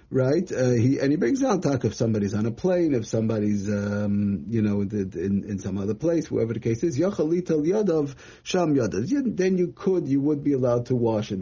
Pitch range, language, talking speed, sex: 115-145 Hz, English, 210 wpm, male